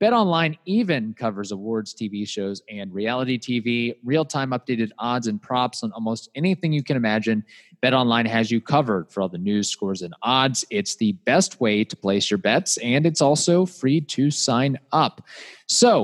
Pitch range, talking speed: 115-155 Hz, 185 wpm